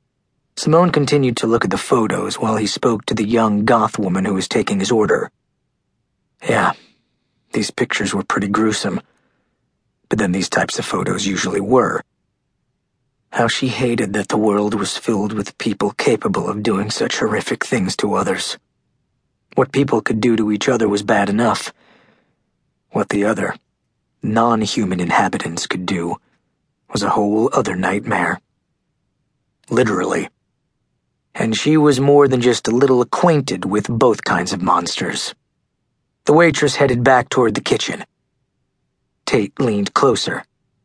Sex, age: male, 40-59